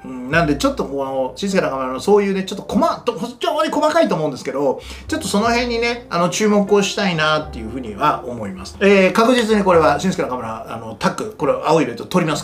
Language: Japanese